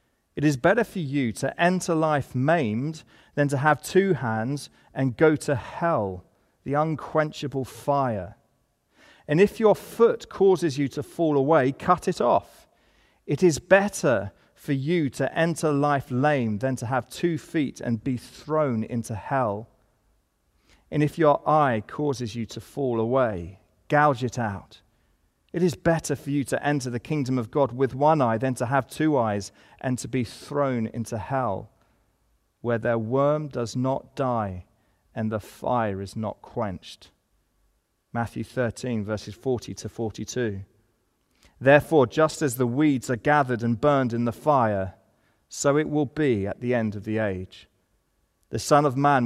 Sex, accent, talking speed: male, British, 160 wpm